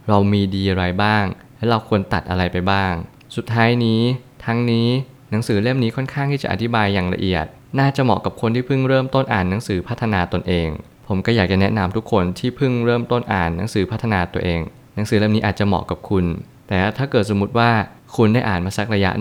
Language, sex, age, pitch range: Thai, male, 20-39, 95-115 Hz